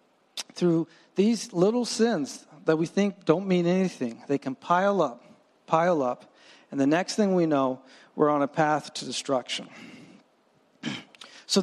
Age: 50-69